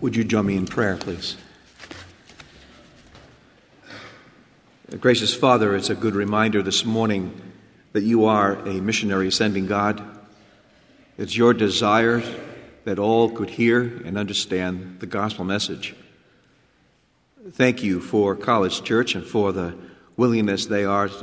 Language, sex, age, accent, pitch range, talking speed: English, male, 50-69, American, 95-115 Hz, 125 wpm